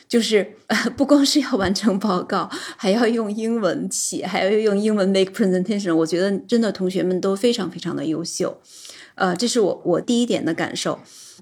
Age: 20-39